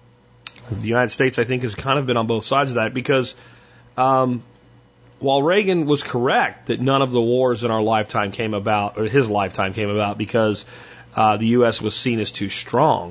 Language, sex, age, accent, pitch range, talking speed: English, male, 40-59, American, 110-135 Hz, 200 wpm